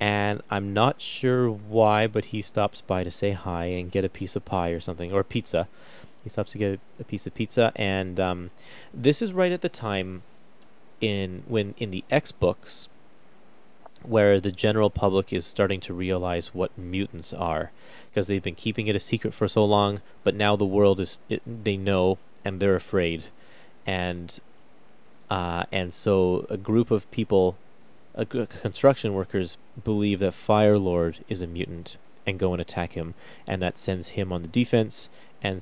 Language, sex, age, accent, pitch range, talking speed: English, male, 30-49, American, 90-110 Hz, 180 wpm